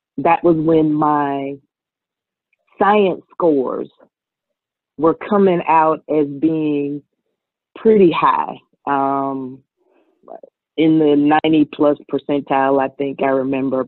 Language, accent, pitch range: English, American, 145-195 Hz